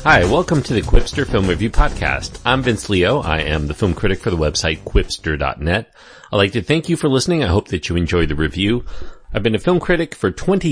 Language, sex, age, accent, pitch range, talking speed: English, male, 40-59, American, 90-125 Hz, 230 wpm